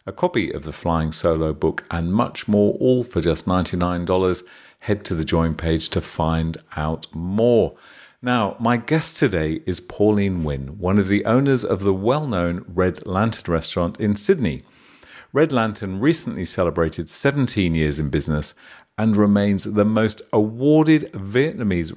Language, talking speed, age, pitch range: English, 155 wpm, 40-59, 85-115 Hz